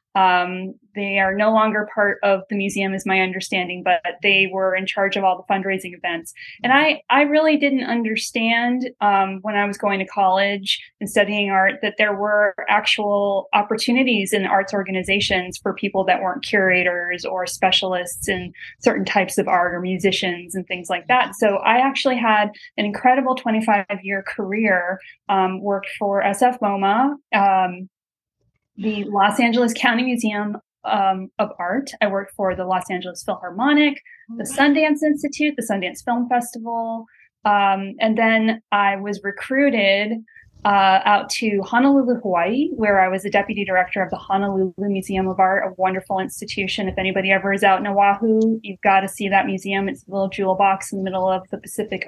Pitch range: 190-225 Hz